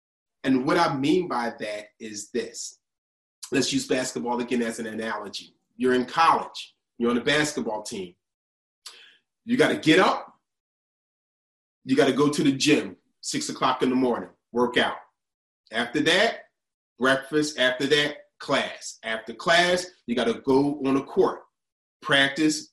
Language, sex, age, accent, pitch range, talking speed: English, male, 30-49, American, 120-155 Hz, 155 wpm